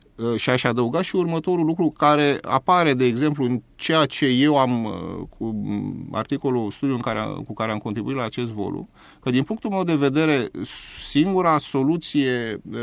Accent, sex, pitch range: native, male, 120-155 Hz